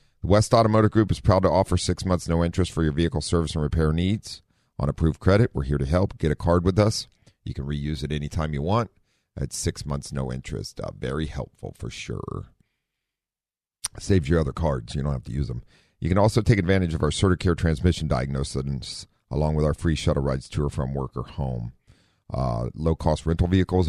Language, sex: English, male